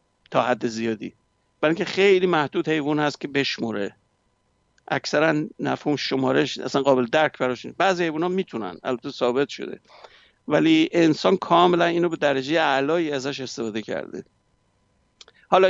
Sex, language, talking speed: male, Persian, 140 wpm